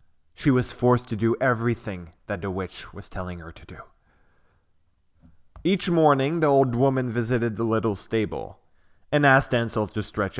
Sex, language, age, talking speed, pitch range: male, French, 20-39, 160 wpm, 90-135 Hz